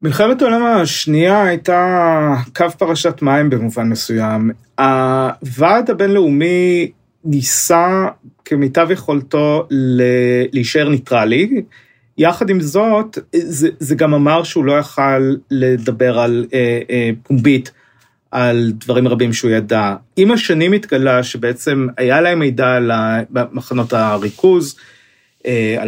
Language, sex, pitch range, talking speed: Hebrew, male, 125-165 Hz, 110 wpm